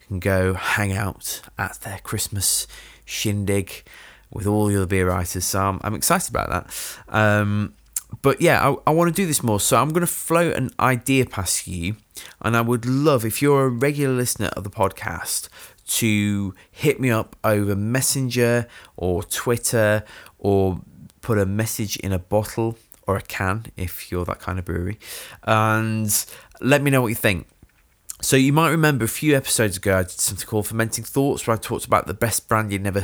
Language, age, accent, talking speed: English, 20-39, British, 190 wpm